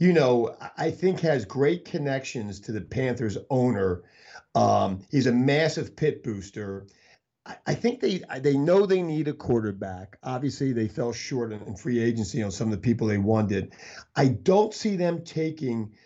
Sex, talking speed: male, 170 wpm